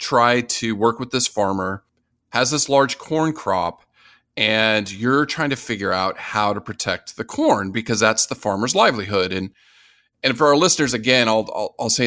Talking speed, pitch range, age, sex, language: 185 wpm, 100-130 Hz, 40-59, male, English